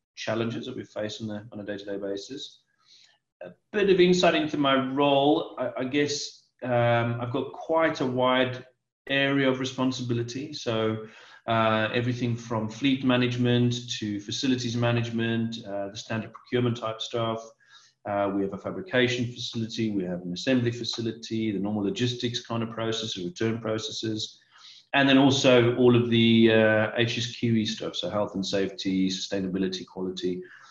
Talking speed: 155 wpm